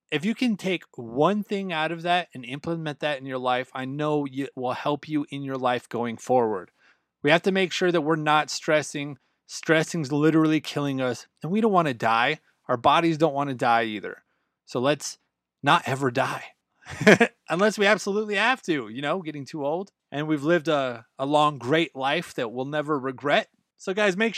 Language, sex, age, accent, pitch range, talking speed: English, male, 30-49, American, 145-185 Hz, 200 wpm